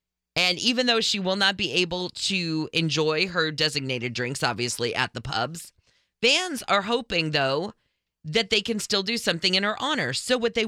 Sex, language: female, English